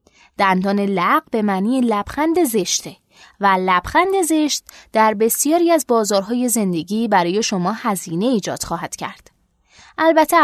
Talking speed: 120 wpm